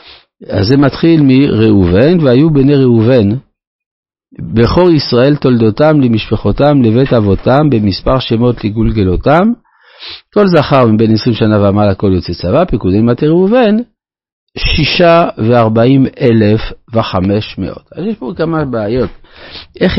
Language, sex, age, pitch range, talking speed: Hebrew, male, 50-69, 105-145 Hz, 115 wpm